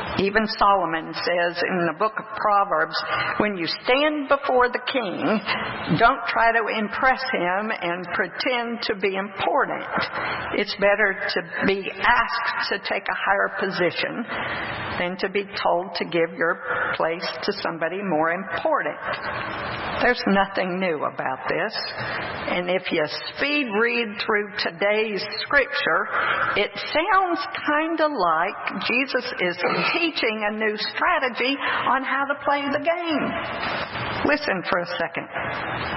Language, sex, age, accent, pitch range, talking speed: English, female, 60-79, American, 195-260 Hz, 135 wpm